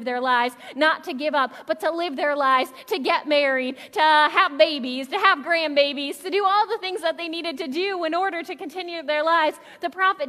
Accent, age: American, 30-49